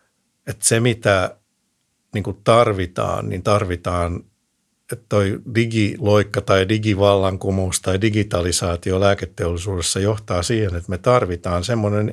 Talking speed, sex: 105 wpm, male